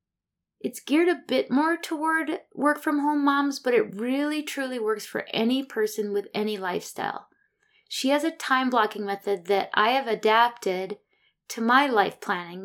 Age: 20-39